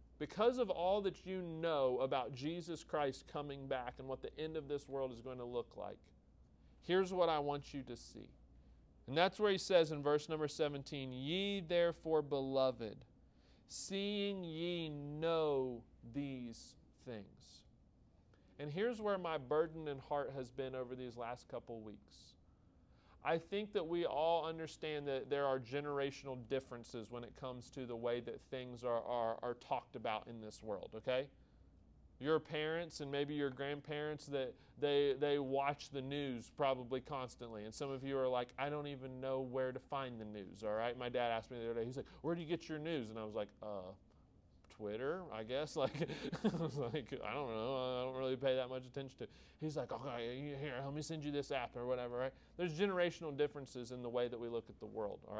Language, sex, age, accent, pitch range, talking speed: English, male, 40-59, American, 120-155 Hz, 200 wpm